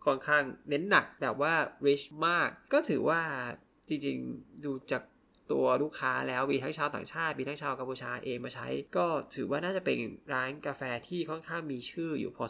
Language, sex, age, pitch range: Thai, male, 20-39, 140-180 Hz